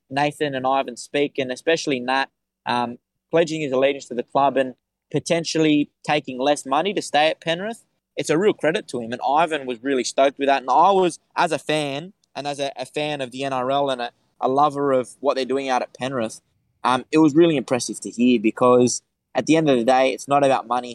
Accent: Australian